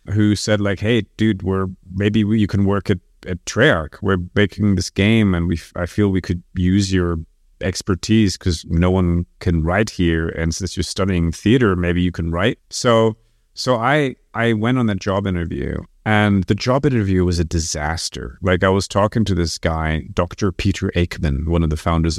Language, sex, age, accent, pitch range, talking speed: English, male, 30-49, American, 85-110 Hz, 195 wpm